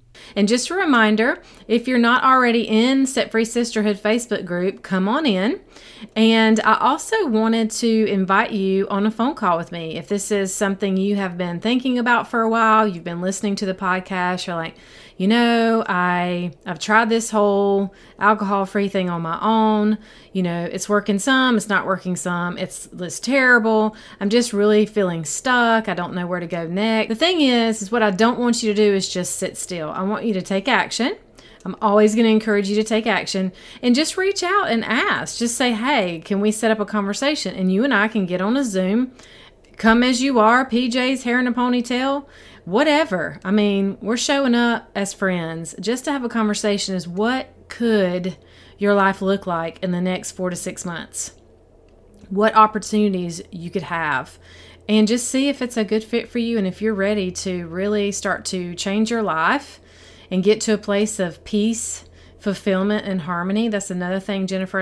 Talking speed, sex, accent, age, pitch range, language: 200 wpm, female, American, 30-49, 190-230 Hz, English